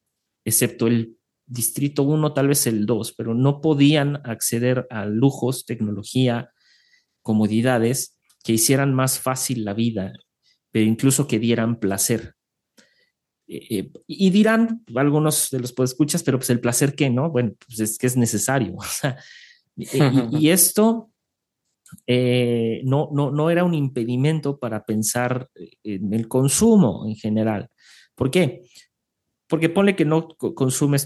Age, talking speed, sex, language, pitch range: 40-59, 135 wpm, male, Spanish, 110-145 Hz